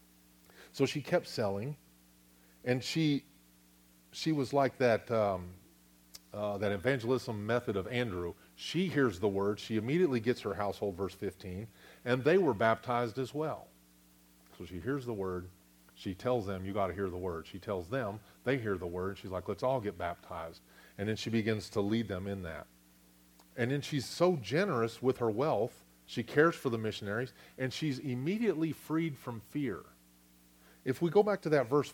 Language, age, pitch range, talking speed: English, 40-59, 90-135 Hz, 180 wpm